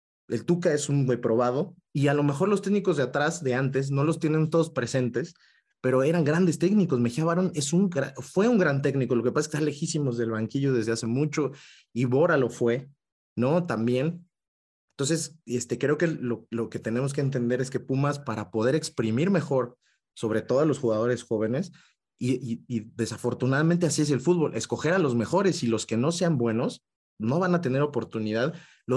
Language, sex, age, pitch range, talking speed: Spanish, male, 30-49, 120-160 Hz, 205 wpm